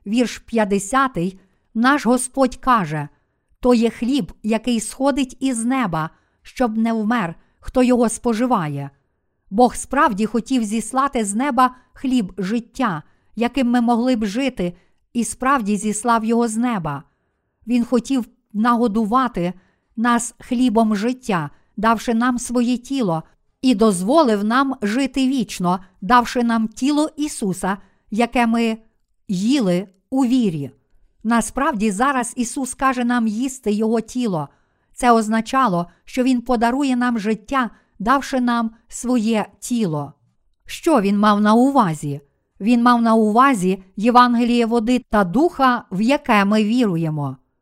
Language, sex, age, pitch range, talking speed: Ukrainian, female, 50-69, 210-255 Hz, 120 wpm